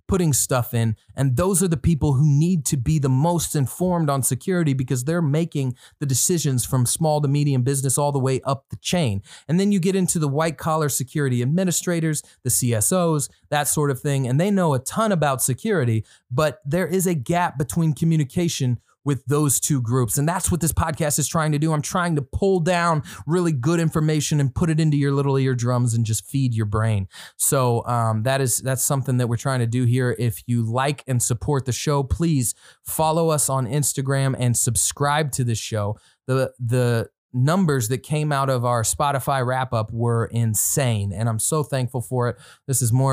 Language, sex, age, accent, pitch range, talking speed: English, male, 30-49, American, 125-155 Hz, 205 wpm